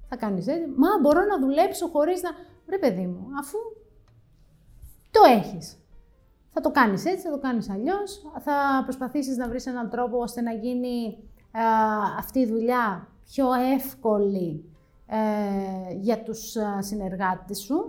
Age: 30-49